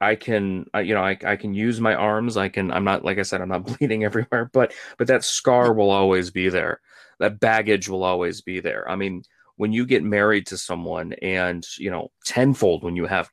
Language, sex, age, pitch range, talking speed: English, male, 30-49, 95-125 Hz, 225 wpm